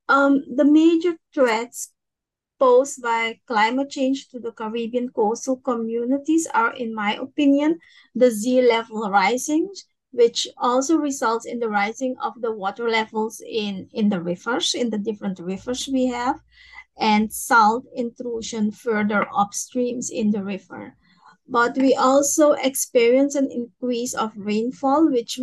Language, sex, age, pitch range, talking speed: French, female, 30-49, 225-265 Hz, 135 wpm